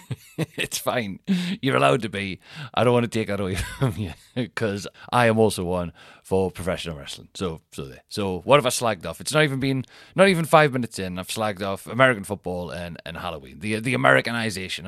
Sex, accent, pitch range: male, British, 95-125 Hz